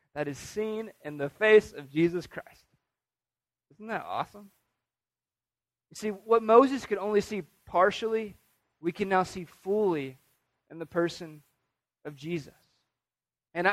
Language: English